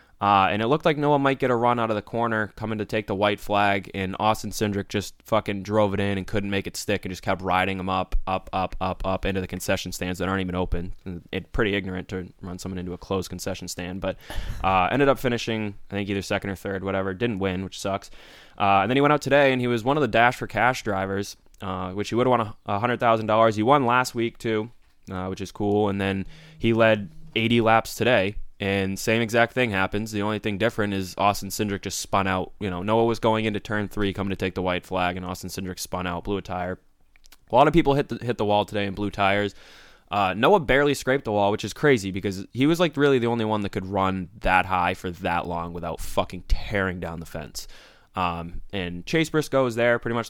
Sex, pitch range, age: male, 95-115 Hz, 20-39